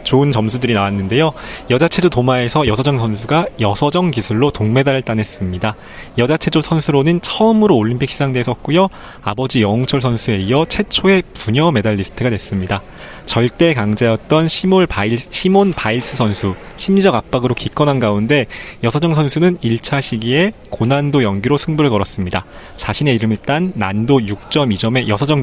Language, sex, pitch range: Korean, male, 110-170 Hz